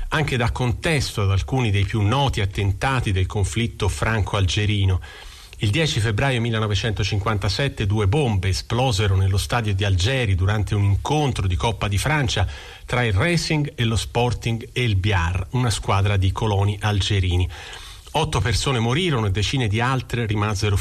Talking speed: 150 wpm